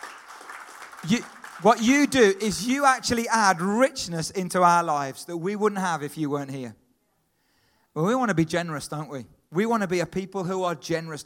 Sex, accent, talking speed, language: male, British, 190 wpm, English